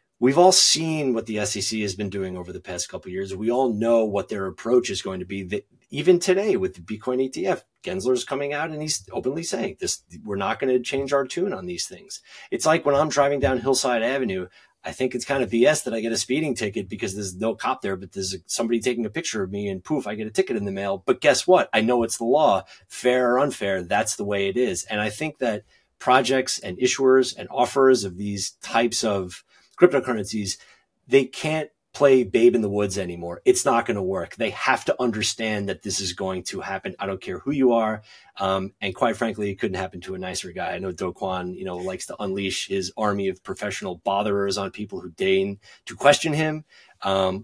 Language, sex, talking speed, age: English, male, 235 wpm, 30-49